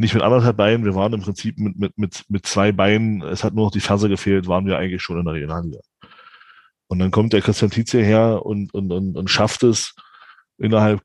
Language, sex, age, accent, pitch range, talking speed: German, male, 20-39, German, 100-120 Hz, 230 wpm